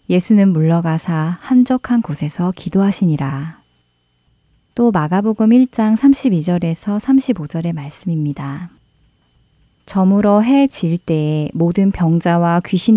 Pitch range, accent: 160-205 Hz, native